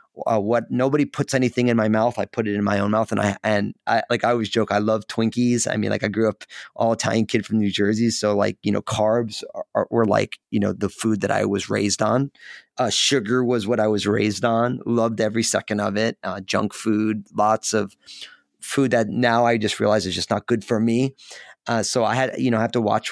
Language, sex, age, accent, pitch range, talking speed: English, male, 30-49, American, 105-125 Hz, 250 wpm